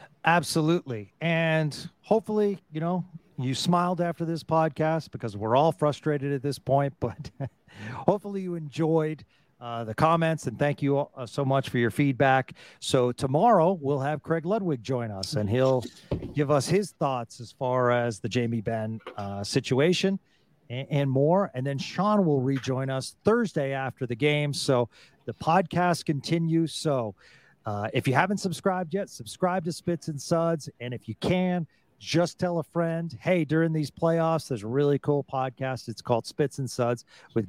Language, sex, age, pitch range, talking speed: English, male, 40-59, 125-165 Hz, 170 wpm